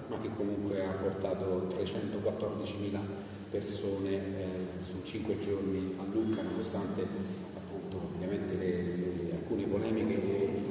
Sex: male